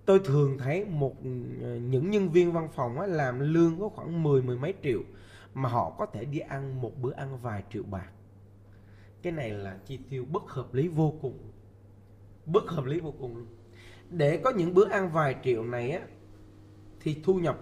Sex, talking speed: male, 185 wpm